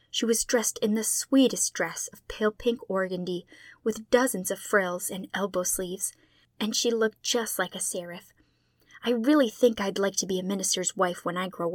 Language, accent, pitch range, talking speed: English, American, 180-240 Hz, 195 wpm